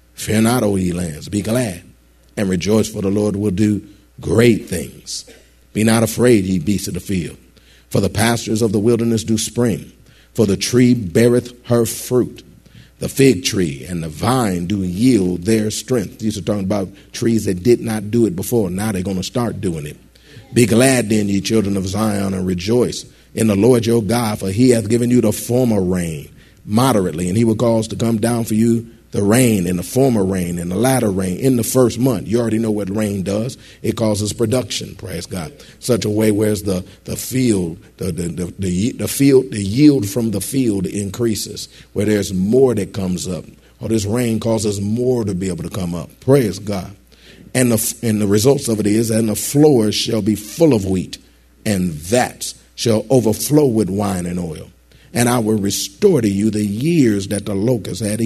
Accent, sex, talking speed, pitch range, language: American, male, 200 wpm, 95-115 Hz, English